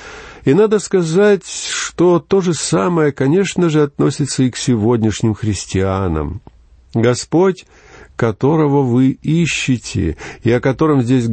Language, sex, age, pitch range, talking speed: Russian, male, 50-69, 105-160 Hz, 115 wpm